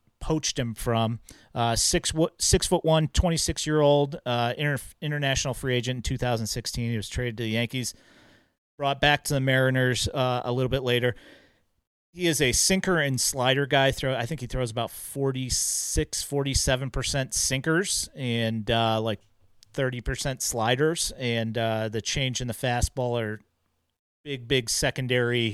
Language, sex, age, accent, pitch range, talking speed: English, male, 40-59, American, 115-145 Hz, 150 wpm